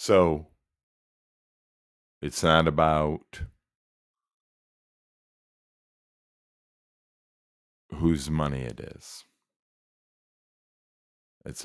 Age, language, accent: 40-59, English, American